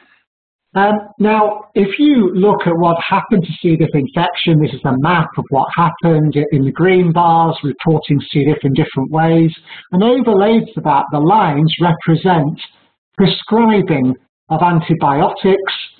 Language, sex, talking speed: English, male, 145 wpm